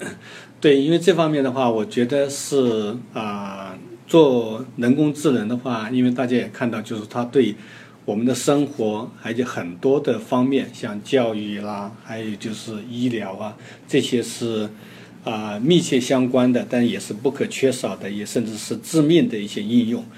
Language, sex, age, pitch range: Chinese, male, 50-69, 110-130 Hz